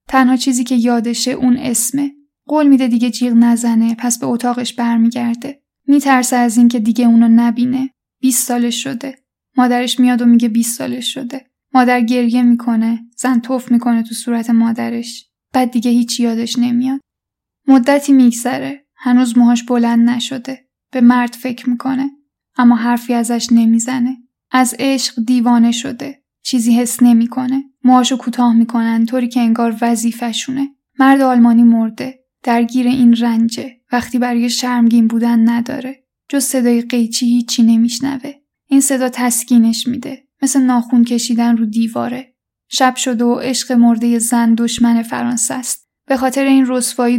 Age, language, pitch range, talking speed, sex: 10-29, English, 235-260 Hz, 140 wpm, female